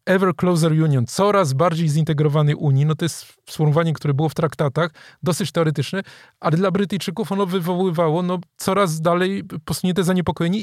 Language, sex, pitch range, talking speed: Polish, male, 145-175 Hz, 150 wpm